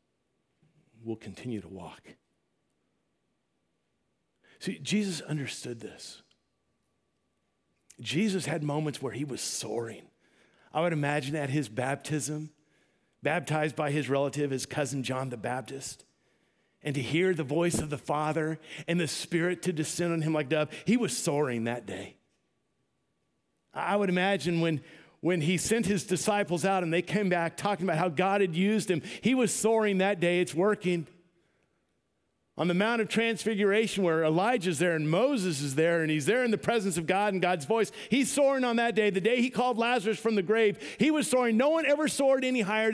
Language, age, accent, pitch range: English, 50-69, American, 150-205 Hz